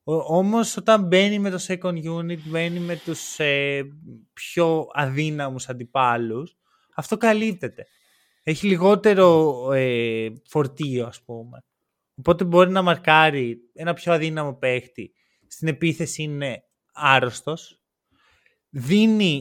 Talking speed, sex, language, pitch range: 110 wpm, male, Greek, 135-195 Hz